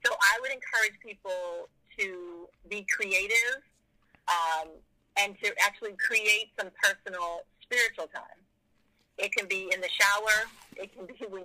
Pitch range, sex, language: 170-210 Hz, female, English